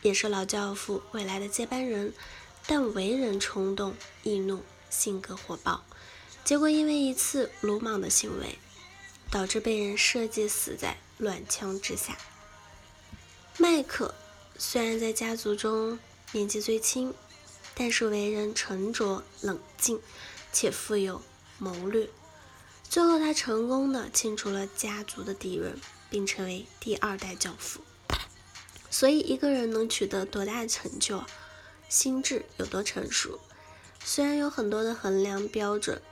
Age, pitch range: 10-29, 195-245 Hz